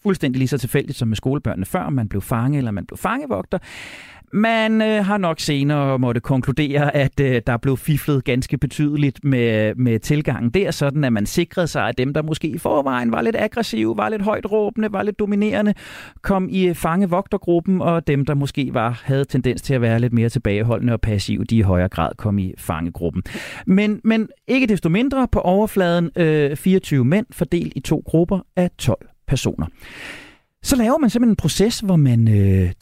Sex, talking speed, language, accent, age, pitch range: male, 185 wpm, Danish, native, 40-59, 120-180 Hz